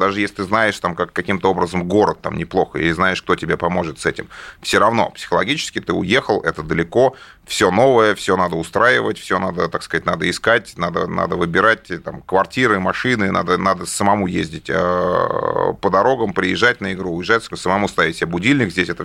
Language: Russian